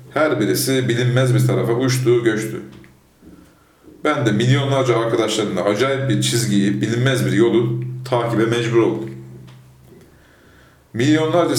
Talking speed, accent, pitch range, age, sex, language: 110 wpm, native, 110-130 Hz, 40-59, male, Turkish